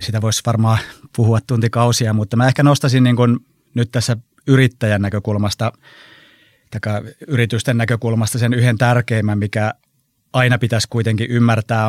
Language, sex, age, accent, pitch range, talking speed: Finnish, male, 30-49, native, 110-125 Hz, 130 wpm